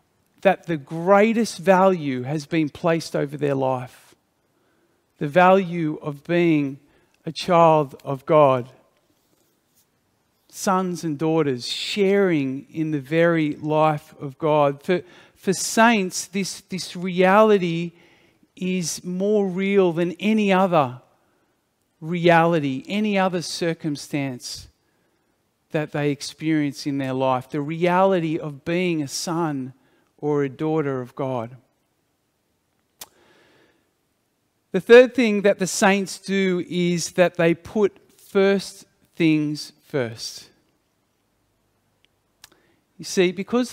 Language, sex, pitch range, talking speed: English, male, 145-185 Hz, 105 wpm